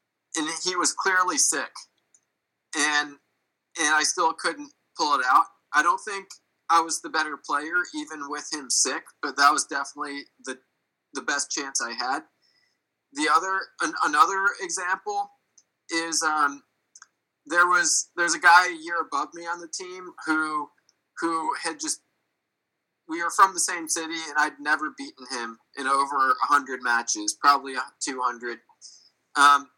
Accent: American